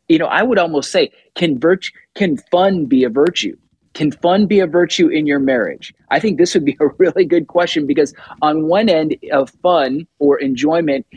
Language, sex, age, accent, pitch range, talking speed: English, male, 30-49, American, 125-165 Hz, 205 wpm